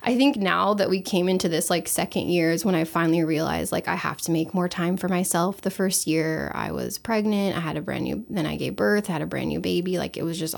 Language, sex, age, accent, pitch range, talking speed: English, female, 20-39, American, 115-190 Hz, 280 wpm